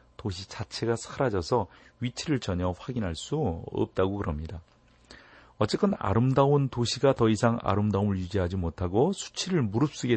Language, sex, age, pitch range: Korean, male, 40-59, 90-120 Hz